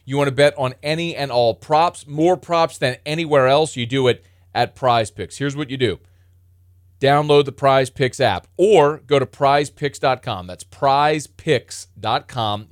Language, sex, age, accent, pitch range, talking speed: English, male, 30-49, American, 110-155 Hz, 165 wpm